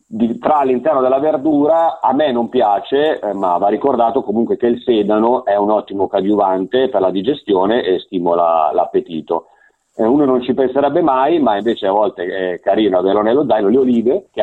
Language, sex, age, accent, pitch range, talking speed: Italian, male, 40-59, native, 95-130 Hz, 185 wpm